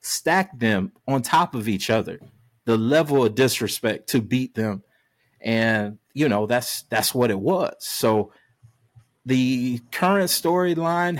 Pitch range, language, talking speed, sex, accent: 110-135 Hz, English, 140 wpm, male, American